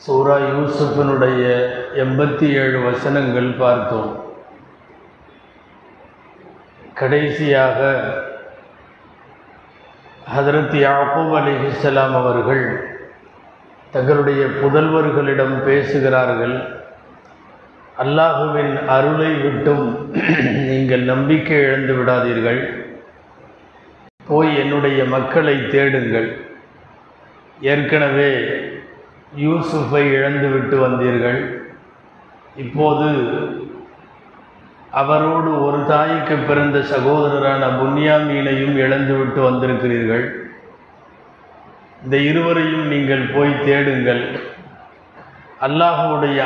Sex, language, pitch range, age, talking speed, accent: male, Tamil, 130-150 Hz, 50-69, 60 wpm, native